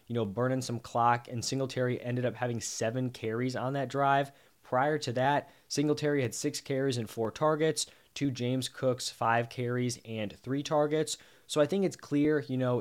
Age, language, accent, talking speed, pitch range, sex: 20-39, English, American, 185 wpm, 115-145 Hz, male